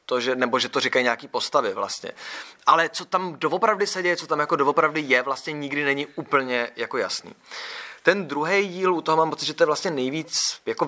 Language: Czech